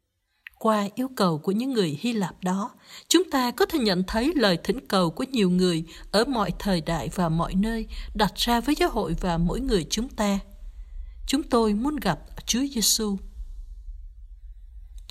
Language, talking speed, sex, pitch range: Vietnamese, 180 wpm, female, 180-245 Hz